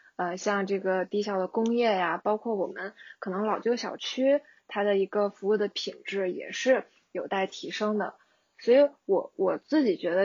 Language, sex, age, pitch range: Chinese, female, 20-39, 195-245 Hz